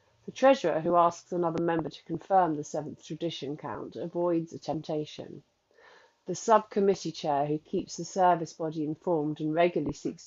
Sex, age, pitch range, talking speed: female, 40-59, 155-180 Hz, 160 wpm